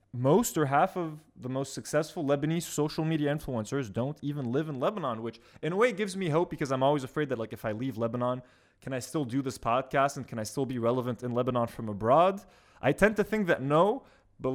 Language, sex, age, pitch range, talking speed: English, male, 20-39, 120-155 Hz, 230 wpm